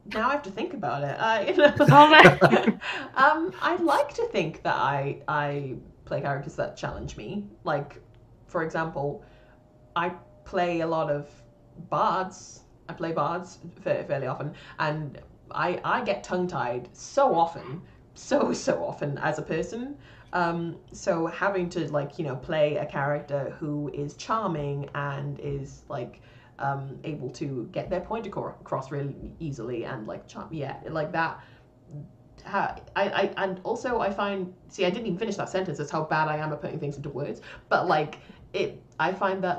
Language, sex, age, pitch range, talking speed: English, female, 20-39, 145-190 Hz, 170 wpm